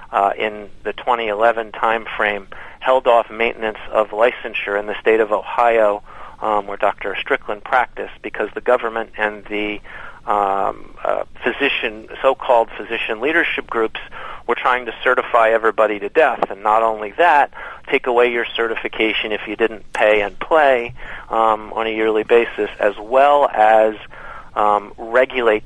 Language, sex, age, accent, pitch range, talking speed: English, male, 40-59, American, 105-115 Hz, 150 wpm